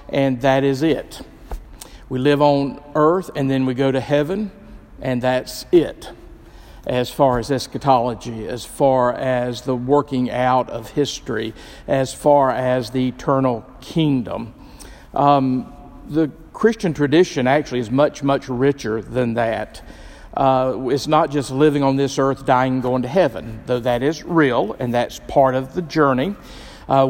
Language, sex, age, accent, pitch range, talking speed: English, male, 50-69, American, 125-145 Hz, 155 wpm